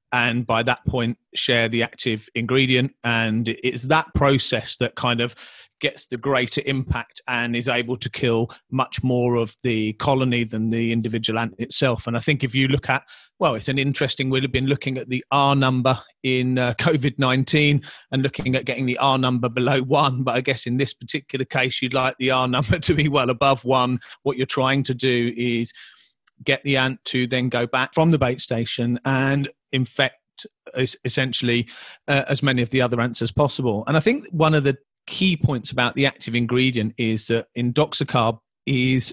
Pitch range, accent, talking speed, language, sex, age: 120-140 Hz, British, 195 wpm, English, male, 30-49